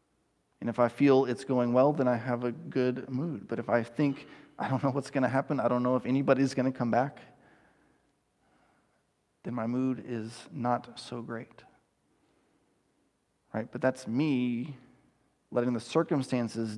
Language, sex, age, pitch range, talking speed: English, male, 30-49, 125-155 Hz, 170 wpm